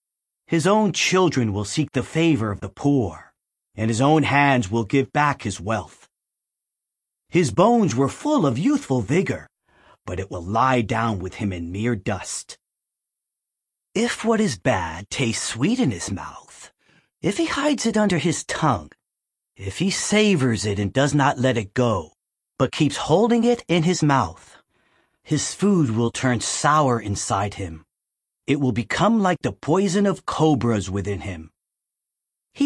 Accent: American